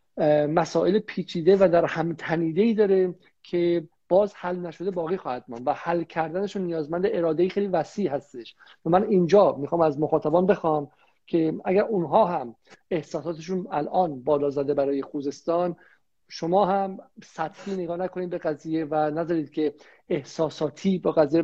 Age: 50-69